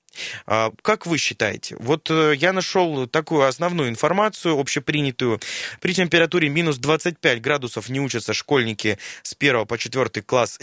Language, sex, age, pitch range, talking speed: Russian, male, 20-39, 120-165 Hz, 130 wpm